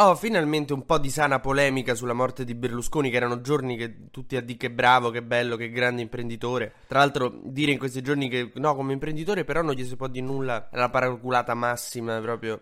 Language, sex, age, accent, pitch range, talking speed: Italian, male, 20-39, native, 120-145 Hz, 230 wpm